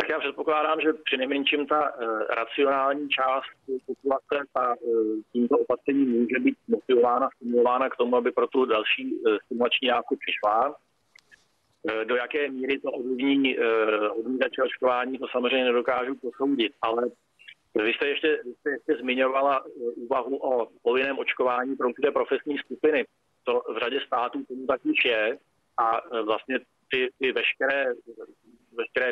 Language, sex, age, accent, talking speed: Czech, male, 40-59, native, 130 wpm